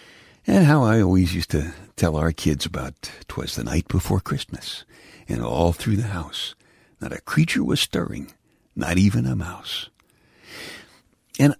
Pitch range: 80-115 Hz